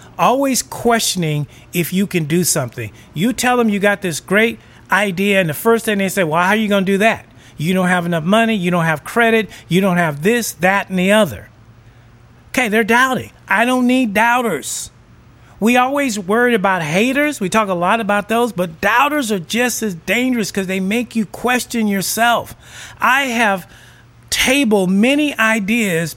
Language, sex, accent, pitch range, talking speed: English, male, American, 180-240 Hz, 185 wpm